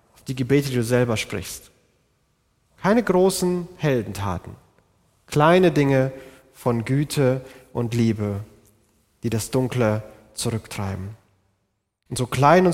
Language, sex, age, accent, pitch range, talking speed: German, male, 30-49, German, 110-150 Hz, 110 wpm